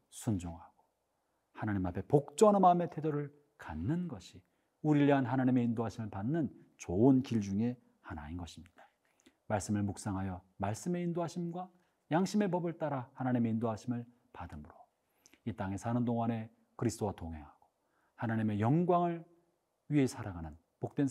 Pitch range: 95-145 Hz